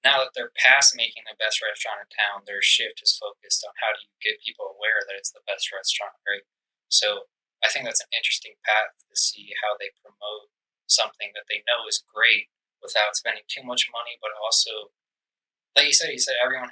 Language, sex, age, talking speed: English, male, 20-39, 210 wpm